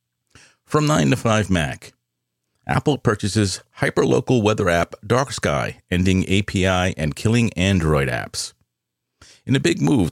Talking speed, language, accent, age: 130 wpm, English, American, 40-59